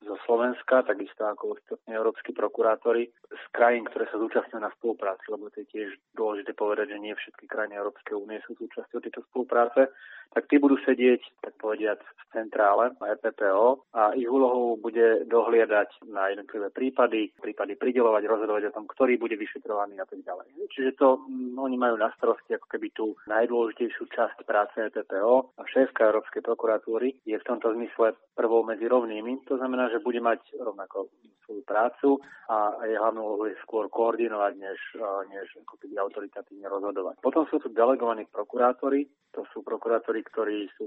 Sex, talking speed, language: male, 165 wpm, Slovak